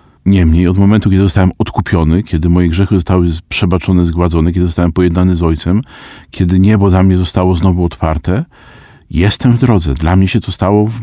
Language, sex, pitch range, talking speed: Polish, male, 85-105 Hz, 175 wpm